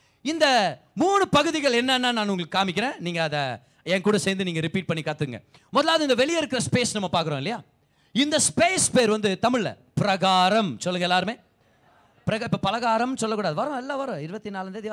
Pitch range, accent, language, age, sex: 170-255 Hz, native, Tamil, 30-49, male